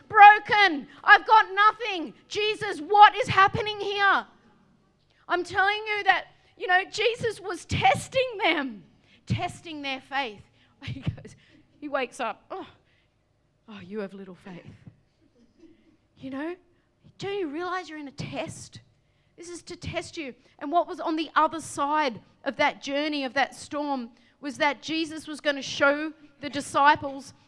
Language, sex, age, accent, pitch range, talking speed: English, female, 40-59, Australian, 285-335 Hz, 150 wpm